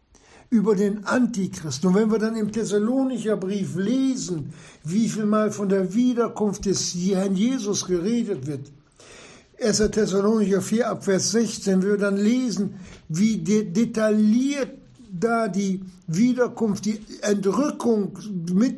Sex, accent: male, German